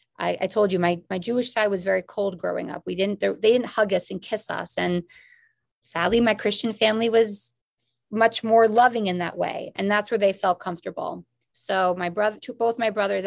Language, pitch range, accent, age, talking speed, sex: English, 185-225 Hz, American, 30-49, 205 wpm, female